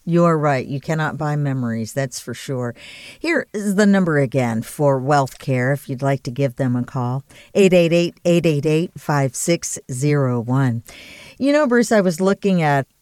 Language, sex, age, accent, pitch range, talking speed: English, female, 50-69, American, 140-190 Hz, 165 wpm